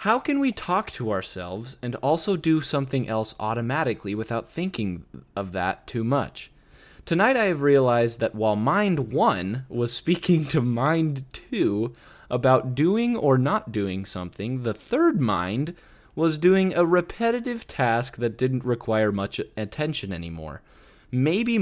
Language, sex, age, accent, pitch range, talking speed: English, male, 20-39, American, 110-155 Hz, 145 wpm